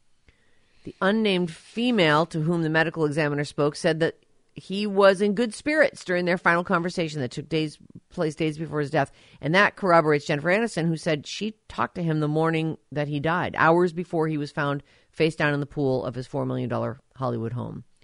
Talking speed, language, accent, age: 200 wpm, English, American, 50-69